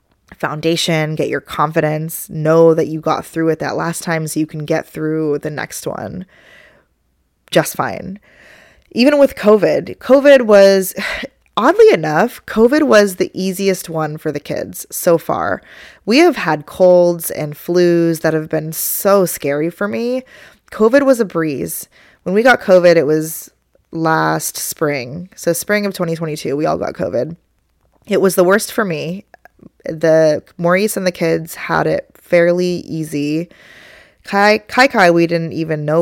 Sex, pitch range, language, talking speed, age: female, 155-190 Hz, English, 160 wpm, 20-39